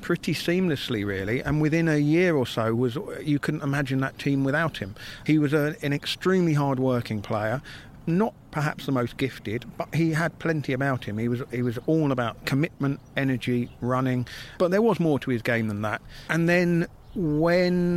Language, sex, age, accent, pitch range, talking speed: English, male, 50-69, British, 120-150 Hz, 190 wpm